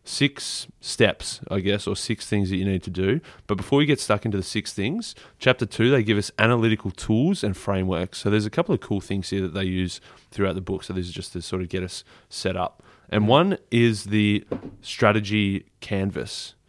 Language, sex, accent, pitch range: English, male, Australian, 95-105 Hz